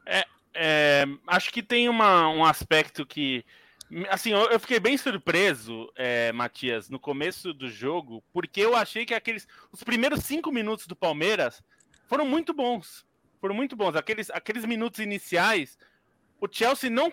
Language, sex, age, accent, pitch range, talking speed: Portuguese, male, 20-39, Brazilian, 175-240 Hz, 150 wpm